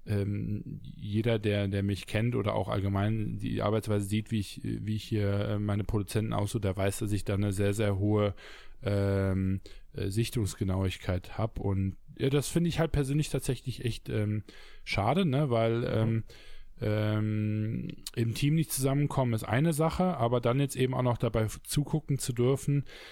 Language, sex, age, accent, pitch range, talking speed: German, male, 20-39, German, 105-135 Hz, 165 wpm